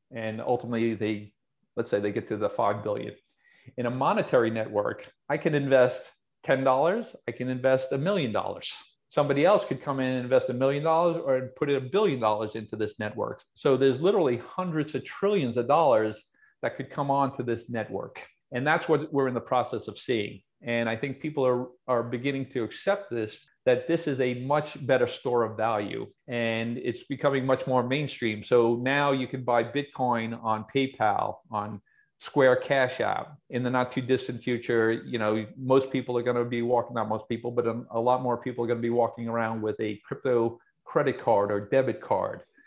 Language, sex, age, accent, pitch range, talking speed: English, male, 40-59, American, 115-135 Hz, 195 wpm